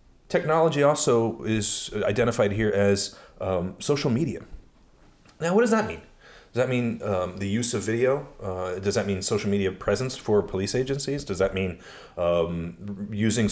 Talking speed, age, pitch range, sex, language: 165 wpm, 30-49, 100-140 Hz, male, English